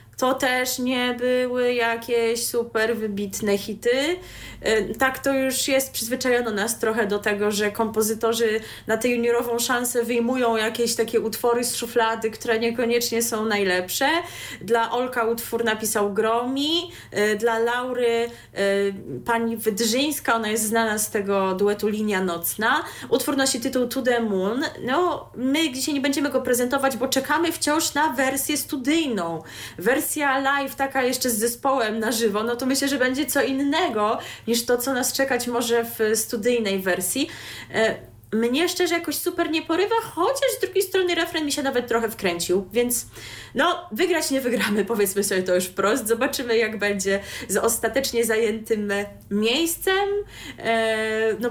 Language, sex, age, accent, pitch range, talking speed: Polish, female, 20-39, native, 210-265 Hz, 150 wpm